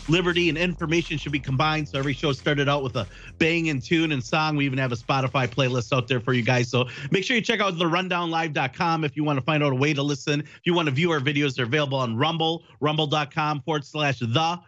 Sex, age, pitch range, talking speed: male, 40-59, 135-165 Hz, 255 wpm